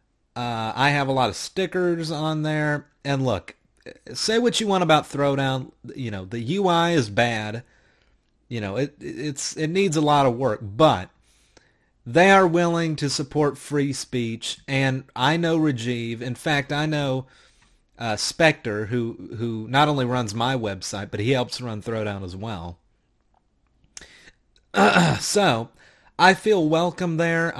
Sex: male